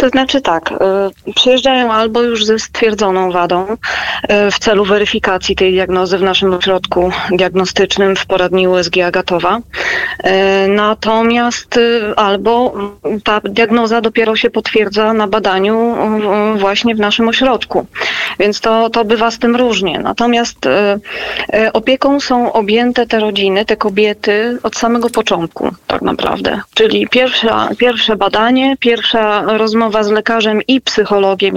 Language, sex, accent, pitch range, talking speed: Polish, female, native, 200-235 Hz, 120 wpm